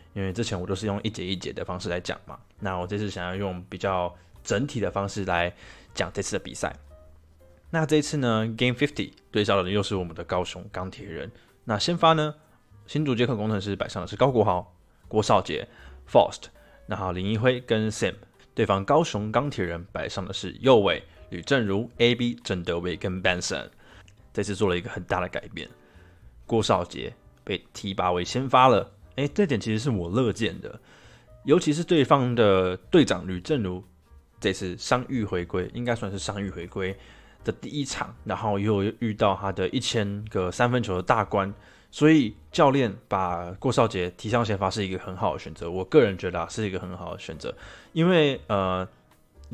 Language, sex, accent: Chinese, male, native